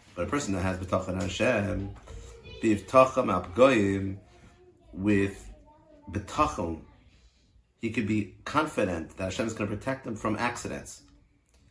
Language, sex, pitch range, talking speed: English, male, 100-130 Hz, 125 wpm